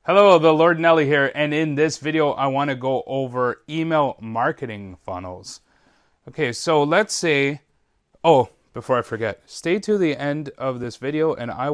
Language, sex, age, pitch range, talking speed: English, male, 30-49, 120-150 Hz, 170 wpm